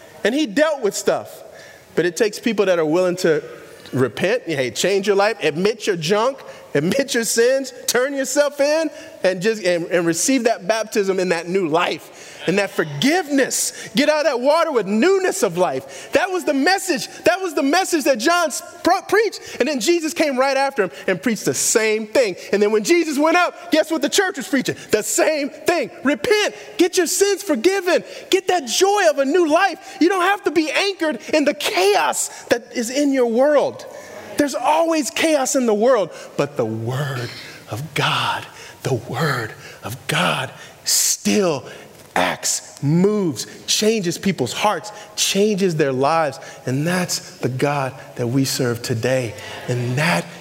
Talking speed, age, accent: 175 wpm, 30-49, American